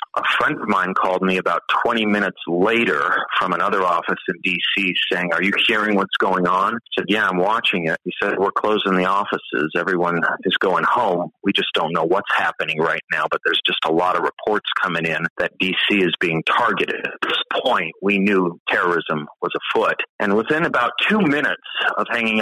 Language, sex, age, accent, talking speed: English, male, 40-59, American, 200 wpm